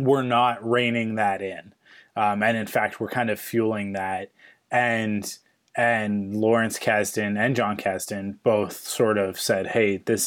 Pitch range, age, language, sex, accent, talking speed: 100-120 Hz, 20-39, English, male, American, 160 wpm